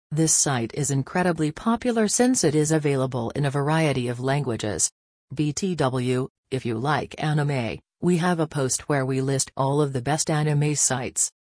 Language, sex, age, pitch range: English, female, 40-59, 135-165 Hz